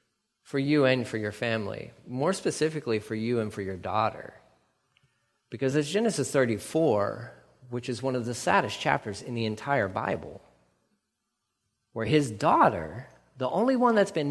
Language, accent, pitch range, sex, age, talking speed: English, American, 115-145 Hz, male, 40-59, 155 wpm